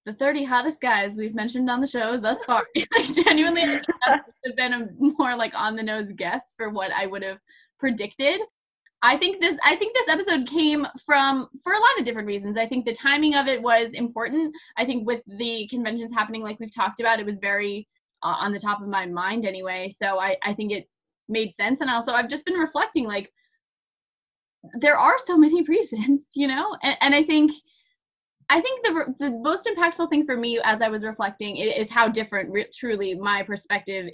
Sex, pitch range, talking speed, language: female, 205-285 Hz, 215 wpm, English